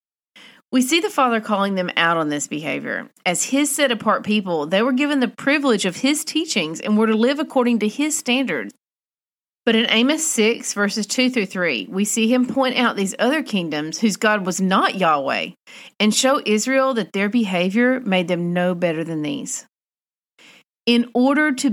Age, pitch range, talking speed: 40-59, 185-255 Hz, 180 wpm